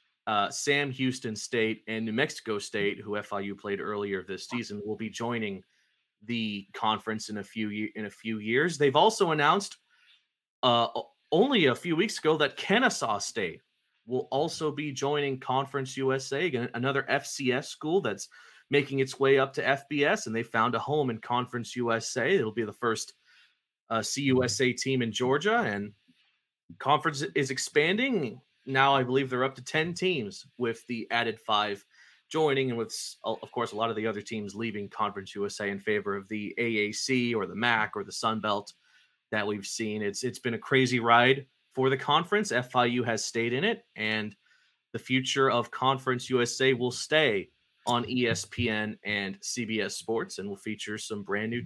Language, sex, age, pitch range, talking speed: English, male, 30-49, 110-135 Hz, 175 wpm